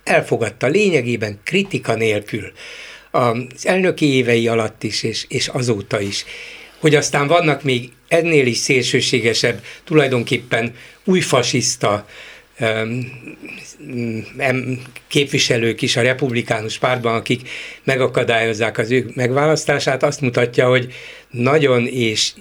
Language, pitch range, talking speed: Hungarian, 115-145 Hz, 95 wpm